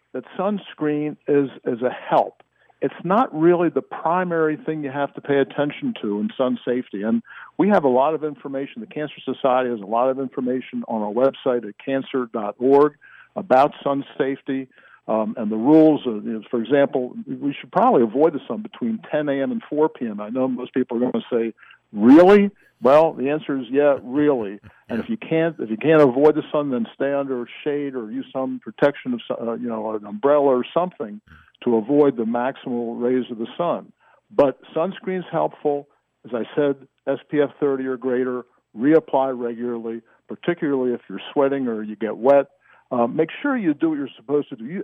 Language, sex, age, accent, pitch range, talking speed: English, male, 60-79, American, 125-155 Hz, 195 wpm